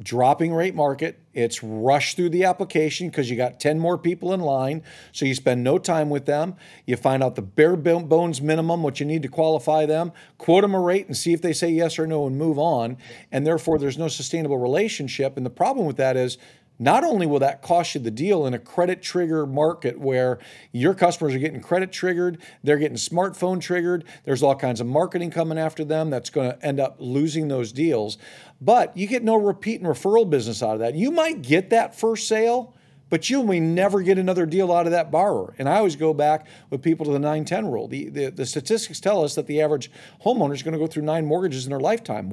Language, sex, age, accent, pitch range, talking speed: English, male, 40-59, American, 145-180 Hz, 230 wpm